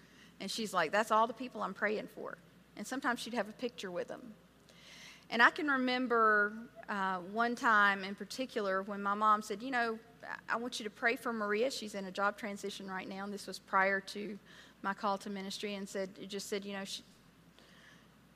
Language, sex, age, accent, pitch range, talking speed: English, female, 40-59, American, 195-235 Hz, 210 wpm